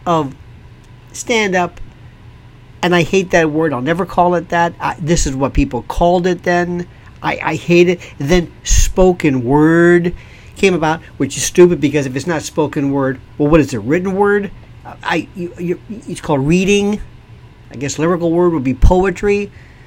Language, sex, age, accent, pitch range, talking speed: English, male, 50-69, American, 135-185 Hz, 180 wpm